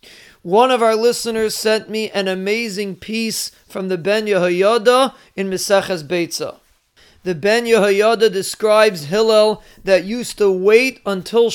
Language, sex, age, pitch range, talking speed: English, male, 30-49, 185-225 Hz, 135 wpm